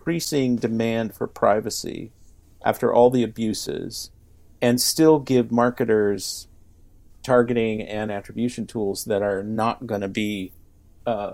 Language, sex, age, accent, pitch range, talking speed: English, male, 40-59, American, 100-130 Hz, 115 wpm